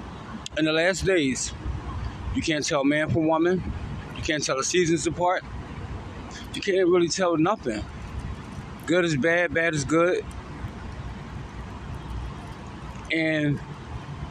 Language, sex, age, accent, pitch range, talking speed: English, male, 20-39, American, 135-180 Hz, 115 wpm